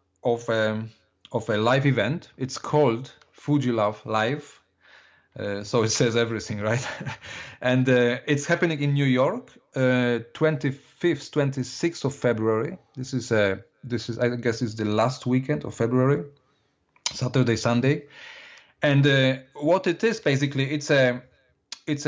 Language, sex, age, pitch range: English, male, 40-59, 115-145 Hz